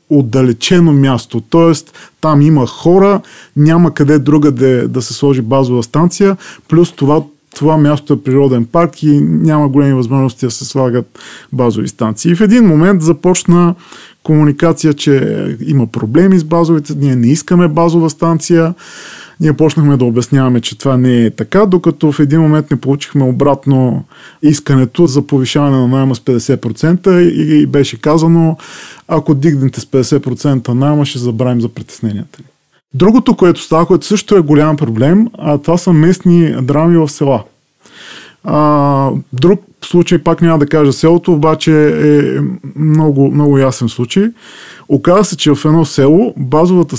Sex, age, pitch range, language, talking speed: male, 20-39, 135-170 Hz, Bulgarian, 150 wpm